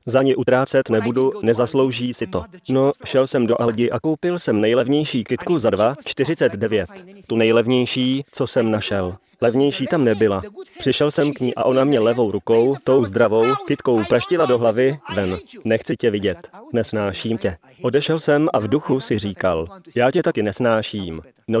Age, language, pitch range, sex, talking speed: 30-49, Slovak, 110-135 Hz, male, 170 wpm